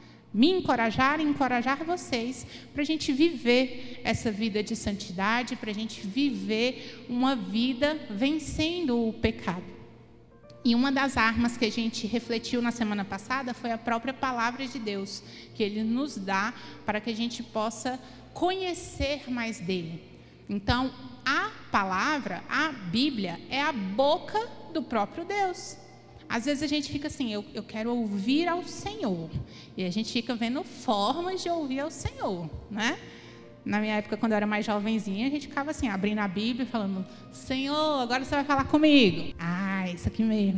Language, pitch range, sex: Portuguese, 210-285 Hz, female